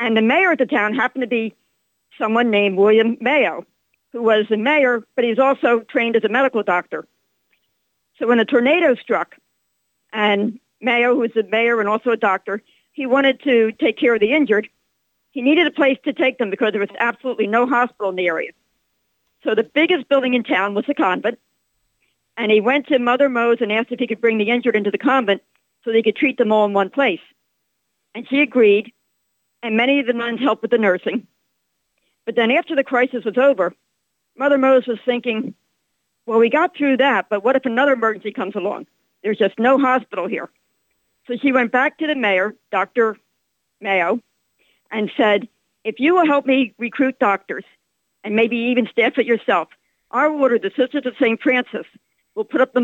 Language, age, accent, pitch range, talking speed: English, 50-69, American, 220-265 Hz, 200 wpm